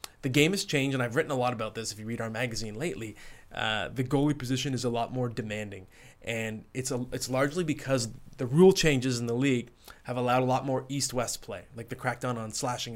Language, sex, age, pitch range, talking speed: English, male, 20-39, 120-145 Hz, 230 wpm